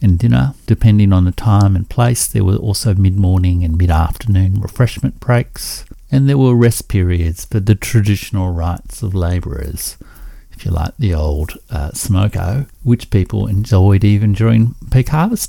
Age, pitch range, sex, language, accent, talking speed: 60-79, 90-115 Hz, male, English, Australian, 155 wpm